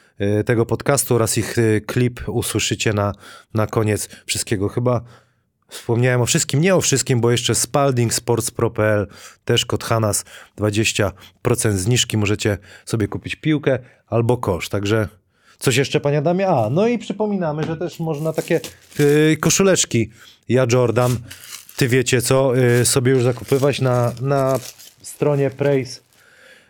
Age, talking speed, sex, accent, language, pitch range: 30-49, 135 wpm, male, native, Polish, 110-135 Hz